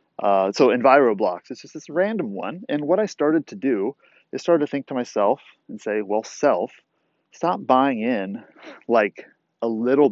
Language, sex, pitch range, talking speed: English, male, 120-185 Hz, 180 wpm